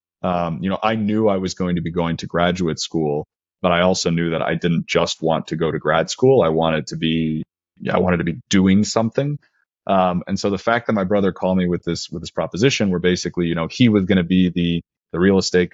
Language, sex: English, male